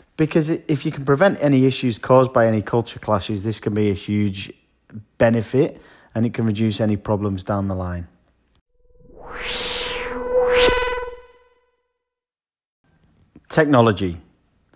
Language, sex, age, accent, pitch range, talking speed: English, male, 30-49, British, 110-155 Hz, 115 wpm